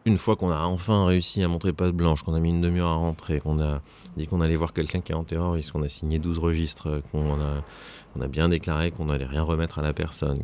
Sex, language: male, French